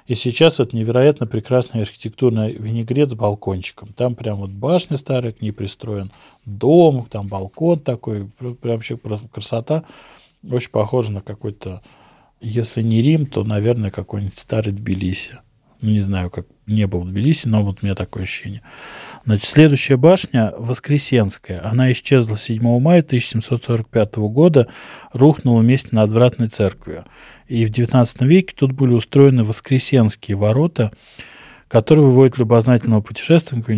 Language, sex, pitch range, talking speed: Russian, male, 105-130 Hz, 140 wpm